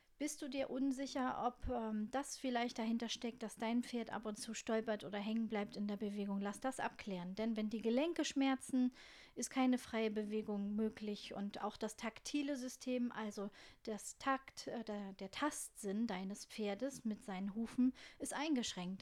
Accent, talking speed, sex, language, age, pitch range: German, 175 wpm, female, German, 40-59, 210-250 Hz